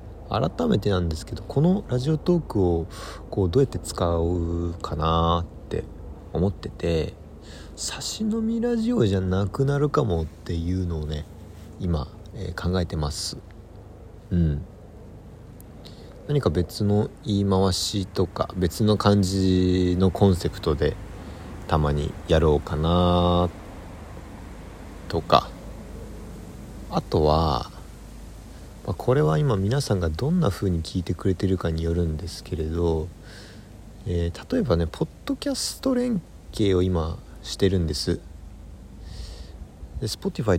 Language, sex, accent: Japanese, male, native